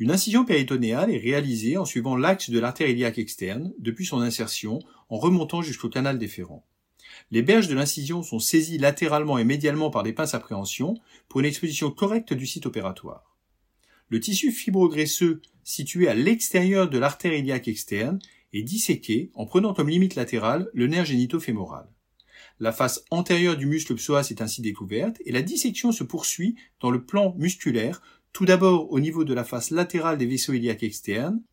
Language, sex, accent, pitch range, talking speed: French, male, French, 115-170 Hz, 175 wpm